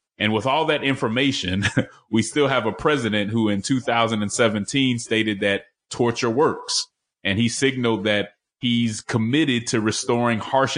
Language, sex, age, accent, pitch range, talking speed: English, male, 30-49, American, 100-120 Hz, 145 wpm